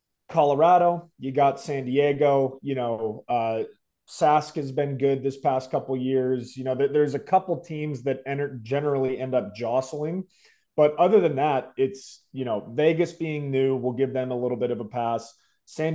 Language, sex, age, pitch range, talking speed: English, male, 30-49, 130-155 Hz, 190 wpm